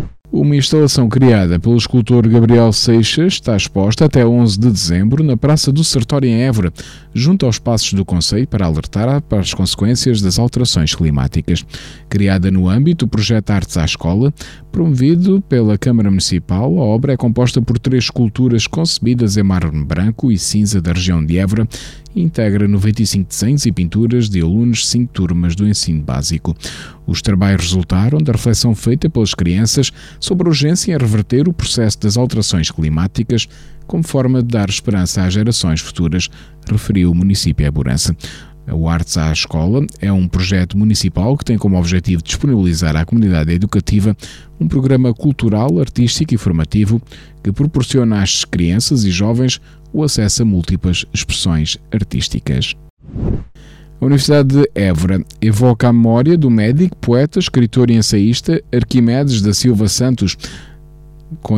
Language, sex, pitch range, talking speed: Portuguese, male, 95-130 Hz, 155 wpm